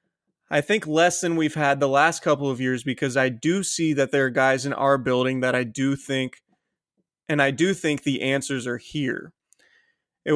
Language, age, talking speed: English, 20-39, 205 wpm